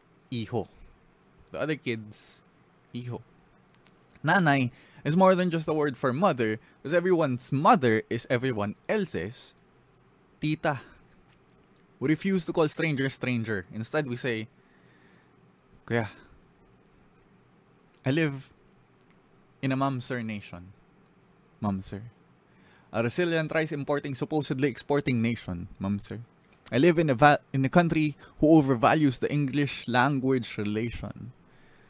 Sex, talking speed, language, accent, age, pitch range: male, 115 wpm, English, Filipino, 20-39, 110-145 Hz